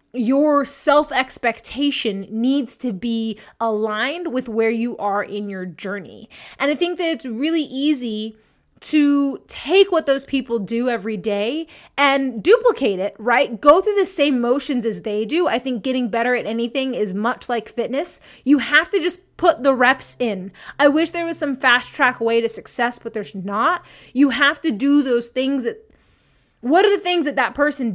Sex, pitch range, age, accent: female, 220-285 Hz, 20-39, American